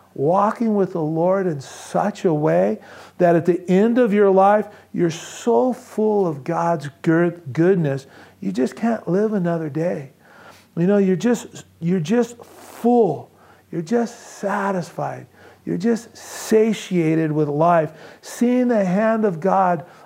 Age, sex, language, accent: 40-59, male, English, American